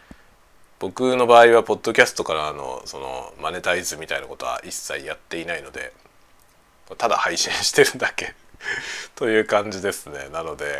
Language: Japanese